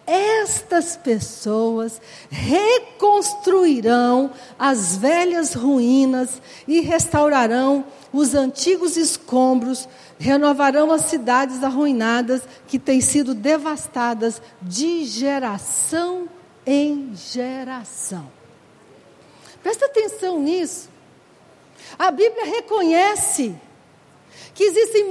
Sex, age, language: female, 60-79, Portuguese